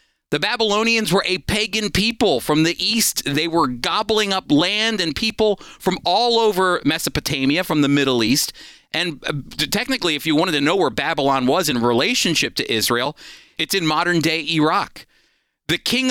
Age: 40-59